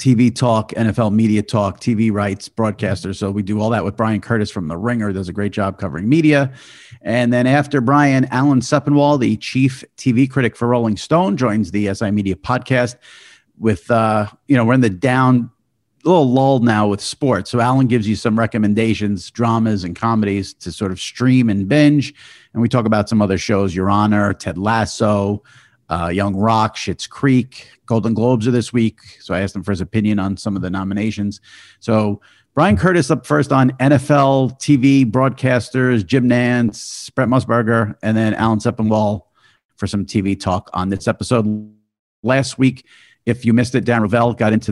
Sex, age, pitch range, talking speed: male, 50-69, 105-125 Hz, 185 wpm